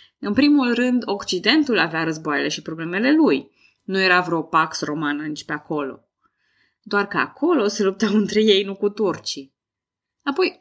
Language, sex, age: Romanian, female, 20-39